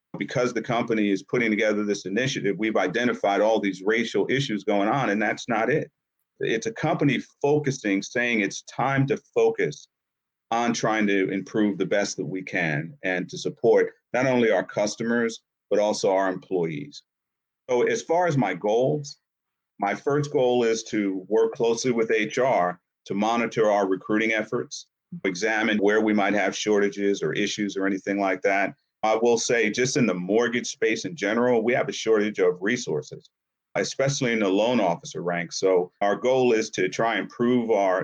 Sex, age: male, 40-59